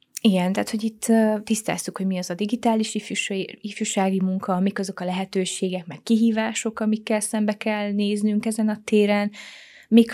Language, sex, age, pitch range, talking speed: Hungarian, female, 20-39, 190-225 Hz, 165 wpm